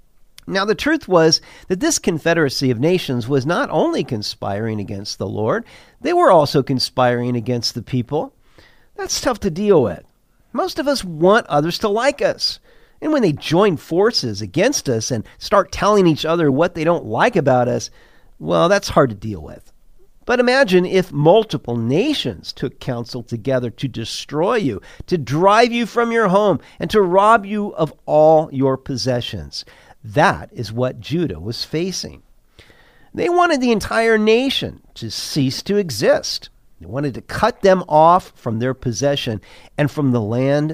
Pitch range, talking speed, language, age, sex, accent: 120-190 Hz, 165 wpm, English, 50-69, male, American